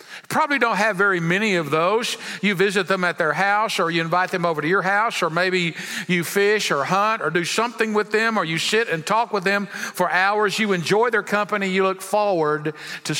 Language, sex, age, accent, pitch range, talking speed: English, male, 50-69, American, 180-215 Hz, 225 wpm